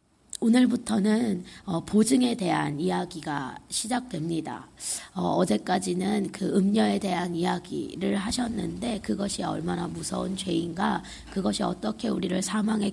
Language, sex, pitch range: Korean, female, 175-235 Hz